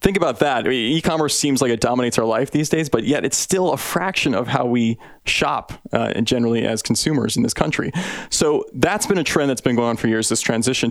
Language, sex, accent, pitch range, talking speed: English, male, American, 115-145 Hz, 230 wpm